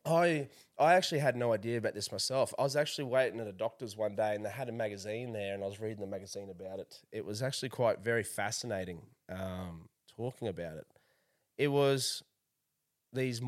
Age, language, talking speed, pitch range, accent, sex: 20-39, English, 200 wpm, 105-135 Hz, Australian, male